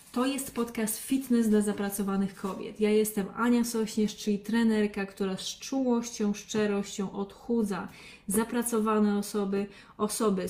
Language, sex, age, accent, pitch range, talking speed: Polish, female, 30-49, native, 195-225 Hz, 120 wpm